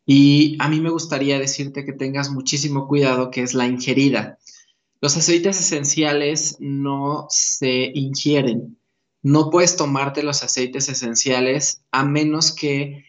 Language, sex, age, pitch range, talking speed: Spanish, male, 20-39, 130-155 Hz, 135 wpm